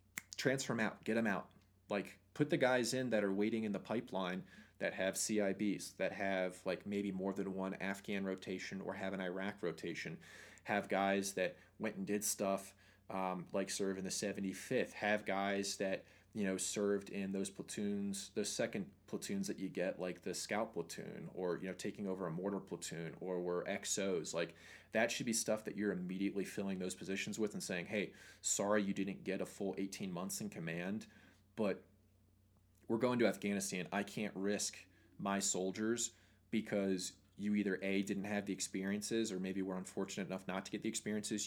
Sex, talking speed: male, 190 wpm